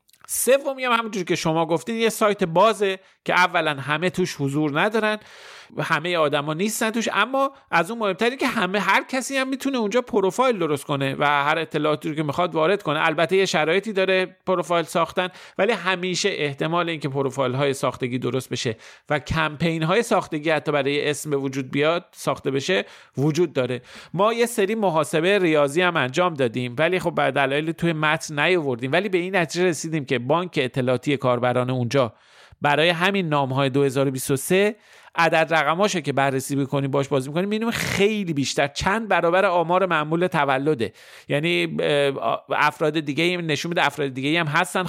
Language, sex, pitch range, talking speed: Persian, male, 145-190 Hz, 160 wpm